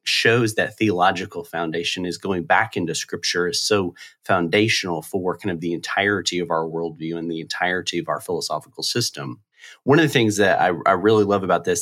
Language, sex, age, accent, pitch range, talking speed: English, male, 30-49, American, 90-110 Hz, 195 wpm